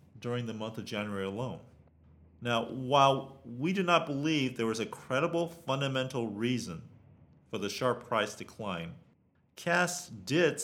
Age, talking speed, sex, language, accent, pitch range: 40-59, 140 wpm, male, English, American, 105-140 Hz